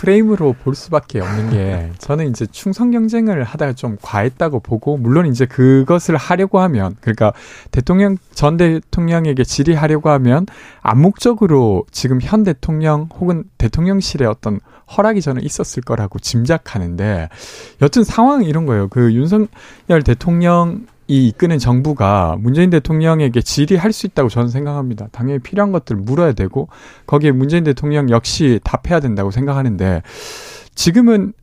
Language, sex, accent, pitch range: Korean, male, native, 120-175 Hz